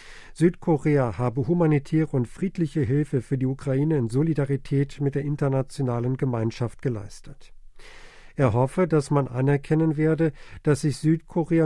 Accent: German